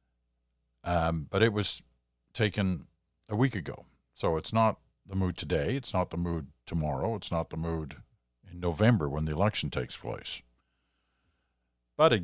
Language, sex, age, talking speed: English, male, 50-69, 155 wpm